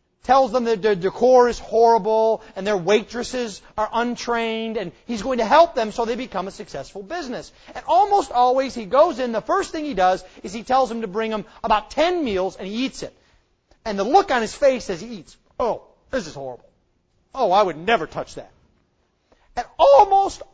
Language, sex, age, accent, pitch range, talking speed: English, male, 30-49, American, 210-330 Hz, 205 wpm